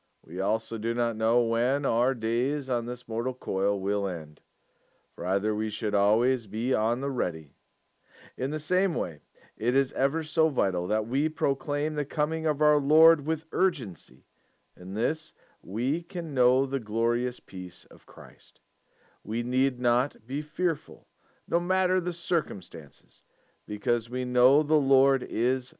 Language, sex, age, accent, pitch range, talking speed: English, male, 40-59, American, 105-135 Hz, 155 wpm